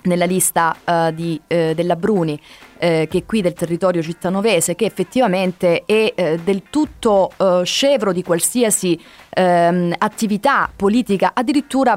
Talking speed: 105 wpm